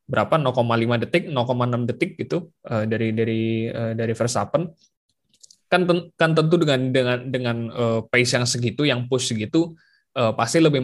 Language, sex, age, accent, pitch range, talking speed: Indonesian, male, 20-39, native, 110-135 Hz, 135 wpm